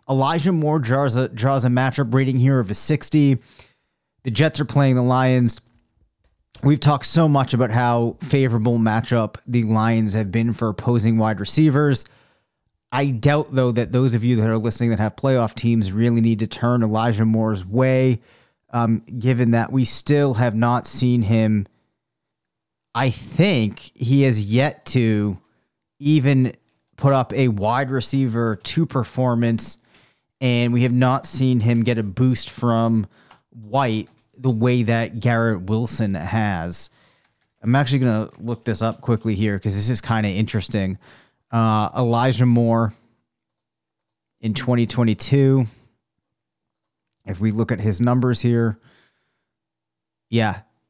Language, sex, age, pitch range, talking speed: English, male, 30-49, 110-130 Hz, 145 wpm